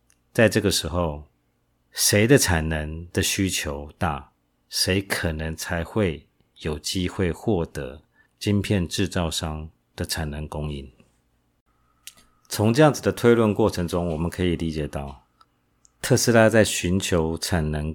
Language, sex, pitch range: Chinese, male, 75-100 Hz